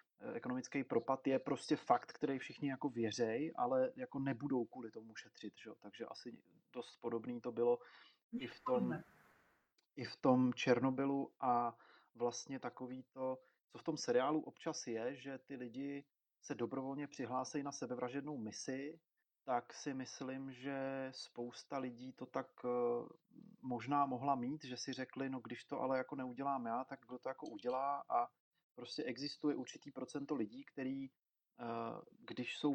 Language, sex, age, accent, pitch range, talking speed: Czech, male, 30-49, native, 125-140 Hz, 150 wpm